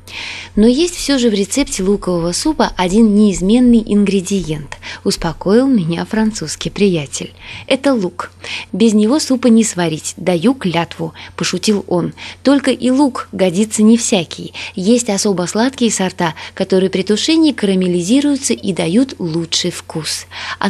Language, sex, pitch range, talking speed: Russian, female, 180-245 Hz, 130 wpm